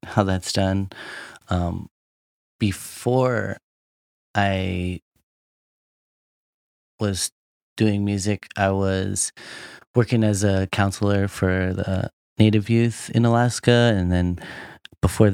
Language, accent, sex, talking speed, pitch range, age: English, American, male, 95 wpm, 90-105 Hz, 30-49